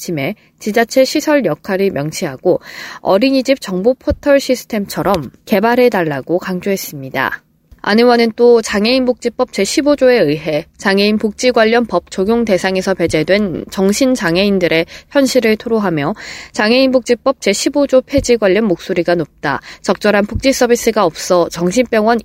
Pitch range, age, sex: 175-245 Hz, 20-39, female